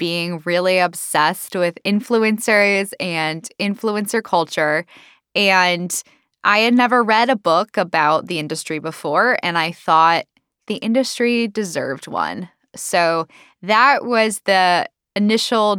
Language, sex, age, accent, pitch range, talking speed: English, female, 10-29, American, 175-245 Hz, 120 wpm